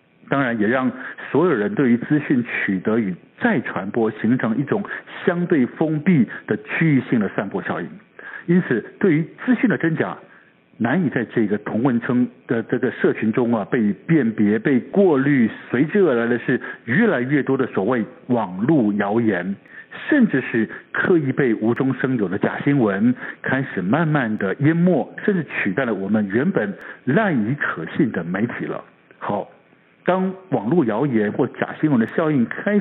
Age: 60-79